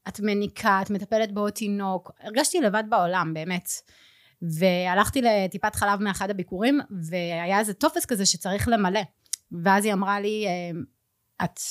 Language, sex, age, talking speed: Hebrew, female, 30-49, 135 wpm